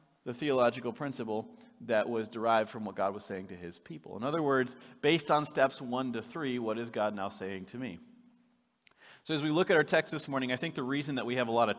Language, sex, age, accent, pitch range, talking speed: English, male, 30-49, American, 125-185 Hz, 250 wpm